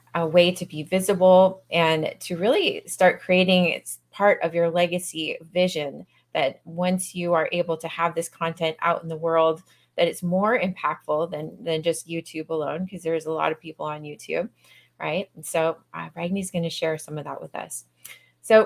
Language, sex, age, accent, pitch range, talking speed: English, female, 20-39, American, 165-195 Hz, 195 wpm